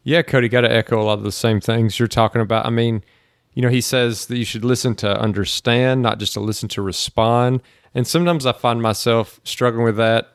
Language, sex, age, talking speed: English, male, 30-49, 230 wpm